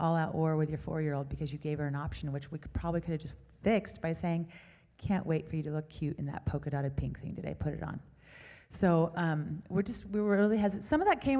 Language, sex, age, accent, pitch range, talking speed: English, female, 30-49, American, 160-215 Hz, 255 wpm